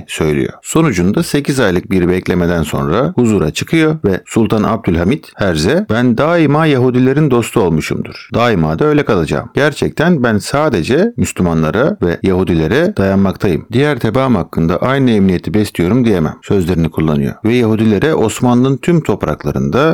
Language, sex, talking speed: Turkish, male, 130 wpm